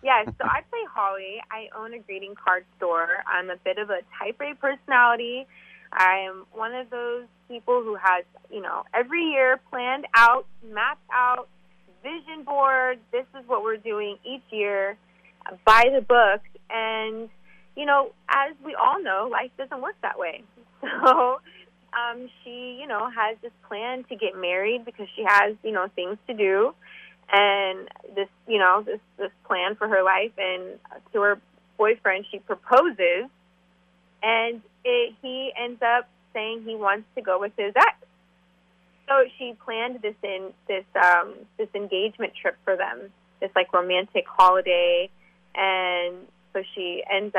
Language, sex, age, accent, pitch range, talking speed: English, female, 20-39, American, 185-245 Hz, 160 wpm